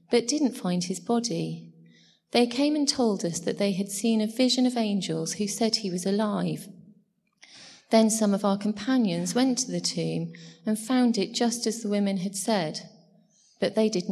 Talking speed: 185 wpm